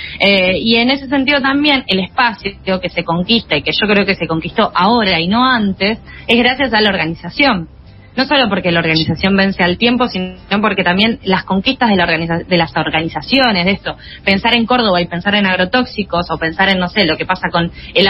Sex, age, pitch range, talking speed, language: female, 20-39, 175-235 Hz, 215 wpm, Spanish